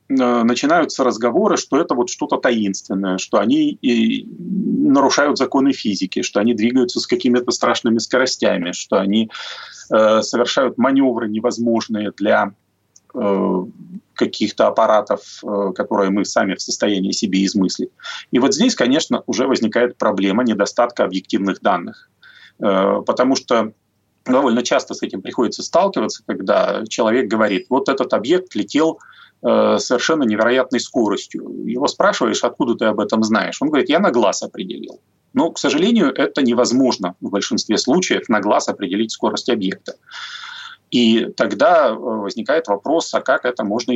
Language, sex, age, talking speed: Russian, male, 30-49, 140 wpm